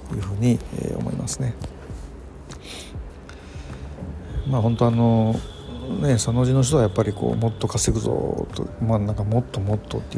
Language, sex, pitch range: Japanese, male, 95-115 Hz